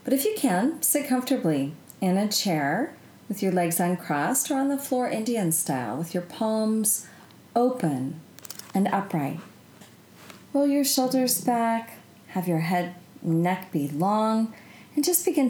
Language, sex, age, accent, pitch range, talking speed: English, female, 40-59, American, 165-230 Hz, 150 wpm